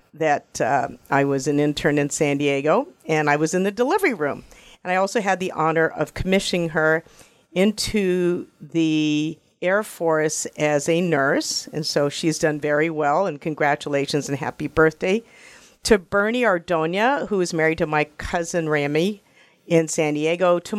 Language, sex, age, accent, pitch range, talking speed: English, female, 50-69, American, 155-195 Hz, 165 wpm